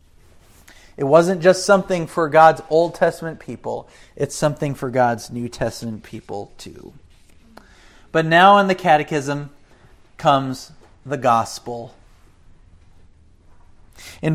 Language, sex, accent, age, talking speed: English, male, American, 40-59, 110 wpm